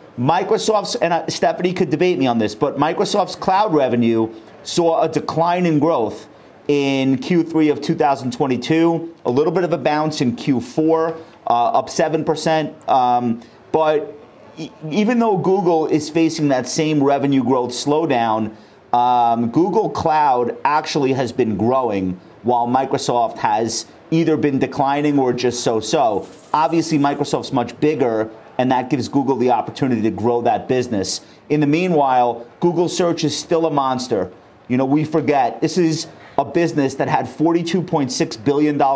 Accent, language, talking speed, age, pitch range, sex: American, English, 145 wpm, 40-59, 125-160 Hz, male